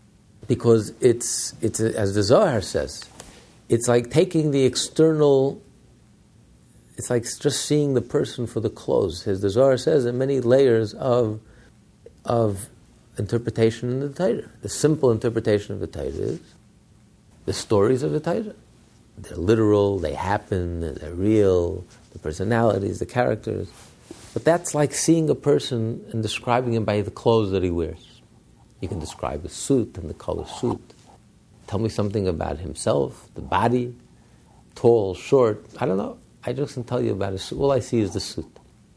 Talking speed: 165 wpm